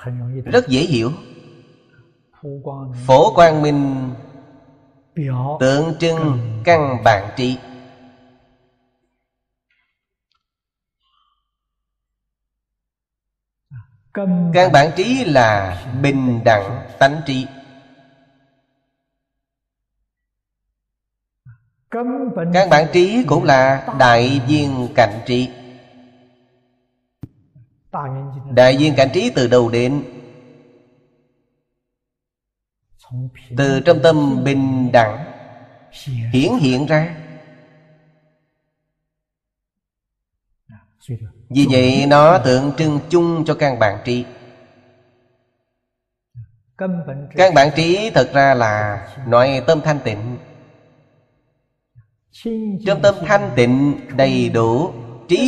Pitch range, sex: 125-150 Hz, male